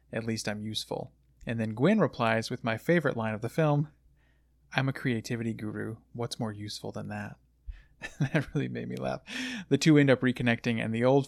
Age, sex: 30-49, male